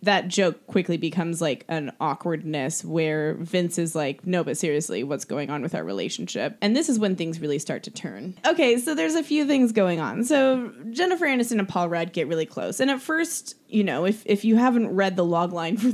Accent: American